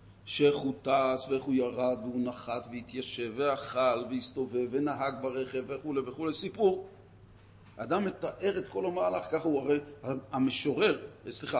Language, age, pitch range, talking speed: Hebrew, 40-59, 110-175 Hz, 140 wpm